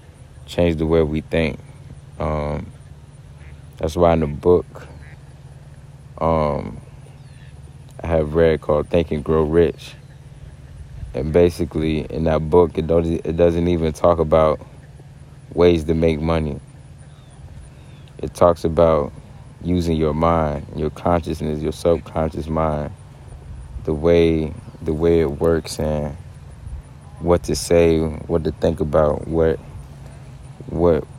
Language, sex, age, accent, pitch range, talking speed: English, male, 20-39, American, 75-85 Hz, 120 wpm